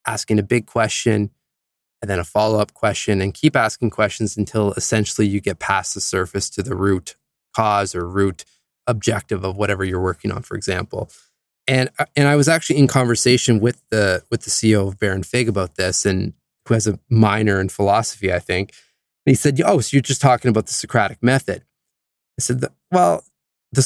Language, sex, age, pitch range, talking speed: English, male, 20-39, 110-135 Hz, 195 wpm